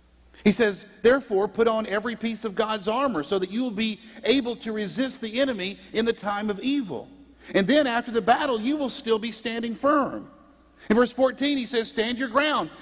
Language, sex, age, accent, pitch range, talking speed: English, male, 50-69, American, 145-230 Hz, 205 wpm